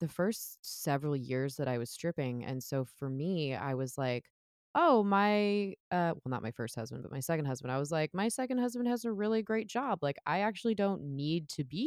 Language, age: English, 20-39